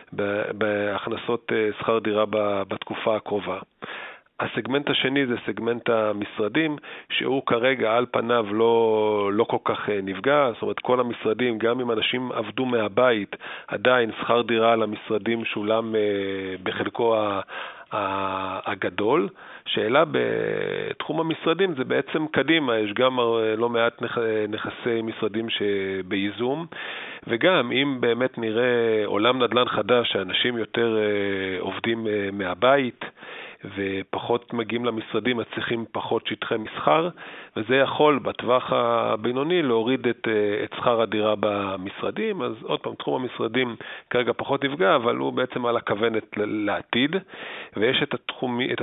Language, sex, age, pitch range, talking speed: Hebrew, male, 40-59, 105-125 Hz, 120 wpm